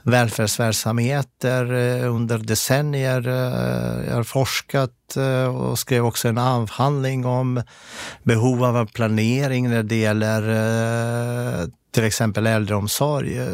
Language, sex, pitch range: Swedish, male, 110-125 Hz